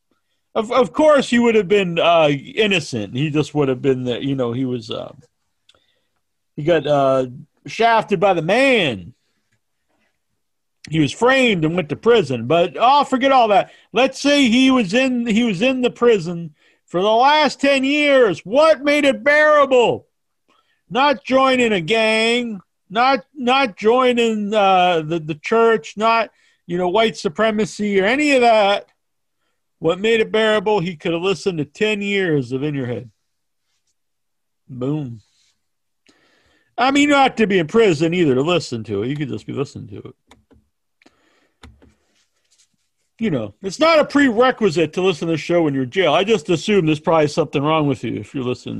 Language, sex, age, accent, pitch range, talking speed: English, male, 50-69, American, 160-240 Hz, 170 wpm